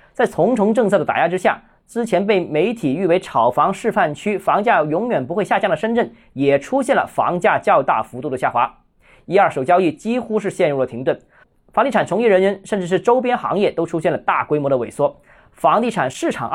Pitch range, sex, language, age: 155-215 Hz, male, Chinese, 20-39